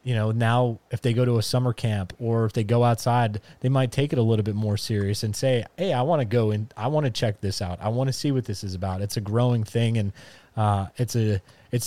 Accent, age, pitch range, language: American, 20-39, 110-125 Hz, English